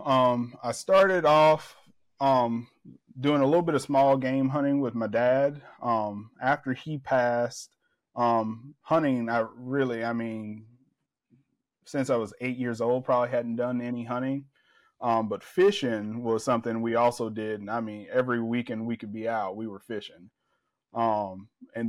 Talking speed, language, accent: 160 wpm, English, American